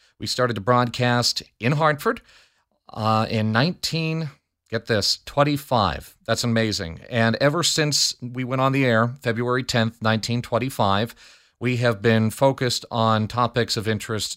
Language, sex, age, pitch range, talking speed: English, male, 40-59, 110-130 Hz, 140 wpm